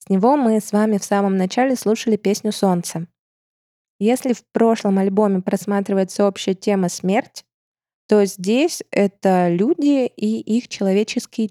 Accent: native